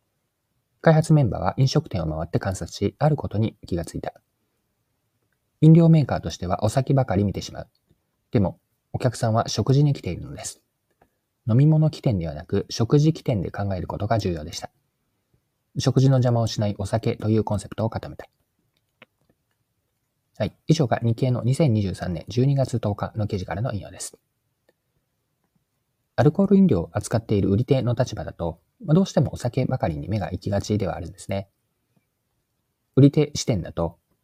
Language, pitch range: Japanese, 100-135 Hz